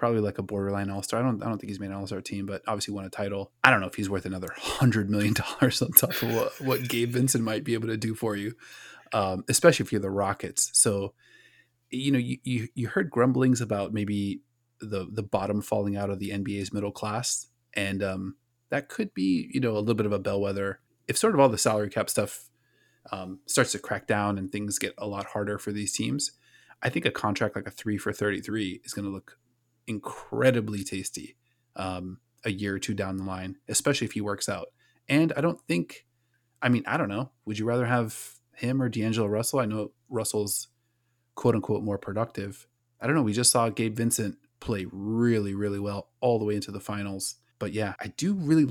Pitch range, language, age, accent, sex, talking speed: 100-120 Hz, English, 20-39, American, male, 220 wpm